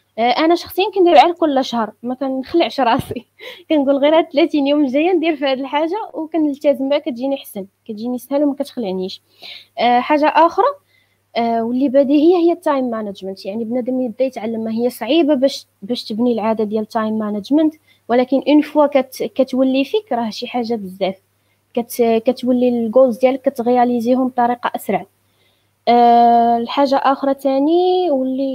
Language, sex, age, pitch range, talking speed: Arabic, female, 20-39, 235-295 Hz, 150 wpm